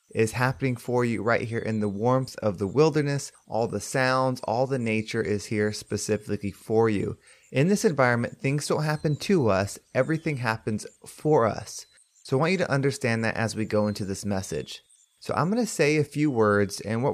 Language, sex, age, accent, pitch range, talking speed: English, male, 20-39, American, 105-140 Hz, 205 wpm